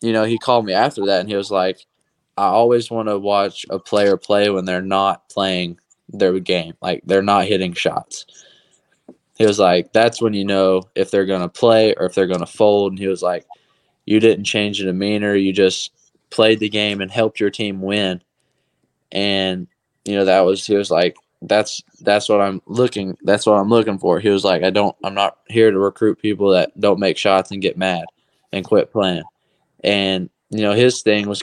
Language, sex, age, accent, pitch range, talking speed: English, male, 10-29, American, 95-105 Hz, 210 wpm